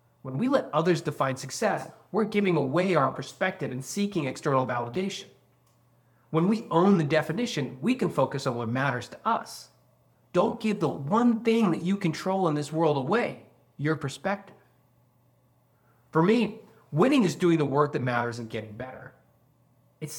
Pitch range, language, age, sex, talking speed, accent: 125-175 Hz, English, 30-49, male, 165 wpm, American